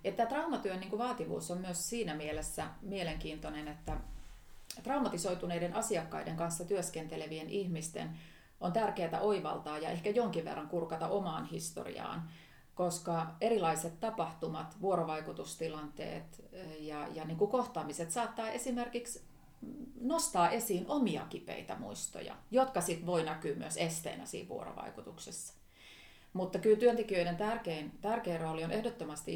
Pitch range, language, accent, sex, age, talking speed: 160-205 Hz, Finnish, native, female, 30-49, 110 wpm